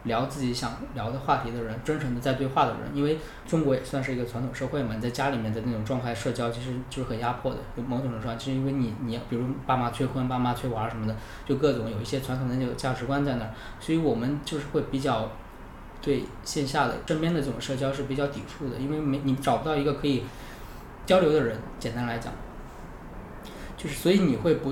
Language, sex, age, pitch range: Chinese, male, 20-39, 120-155 Hz